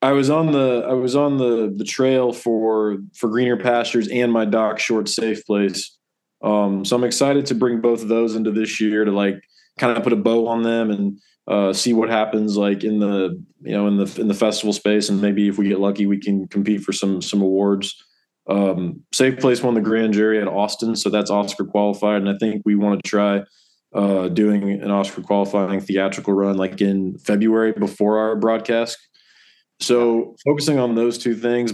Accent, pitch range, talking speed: American, 100-115 Hz, 205 wpm